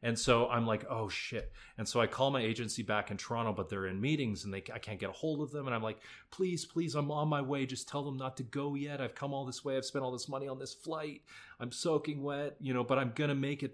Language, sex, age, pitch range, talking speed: English, male, 30-49, 105-130 Hz, 295 wpm